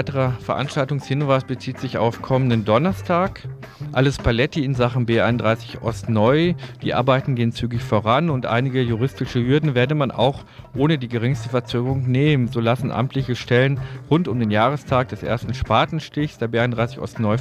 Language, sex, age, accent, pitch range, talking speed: German, male, 40-59, German, 115-145 Hz, 155 wpm